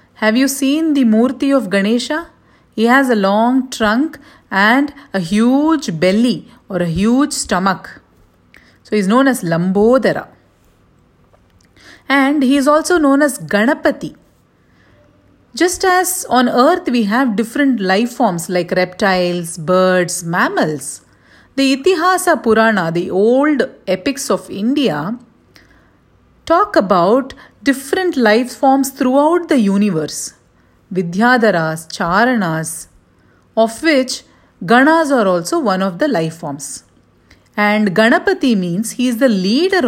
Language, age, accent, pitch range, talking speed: English, 40-59, Indian, 190-285 Hz, 120 wpm